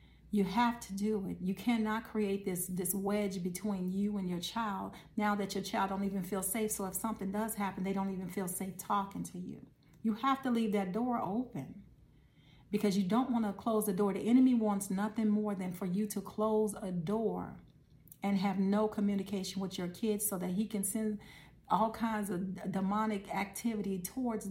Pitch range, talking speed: 195-225 Hz, 200 wpm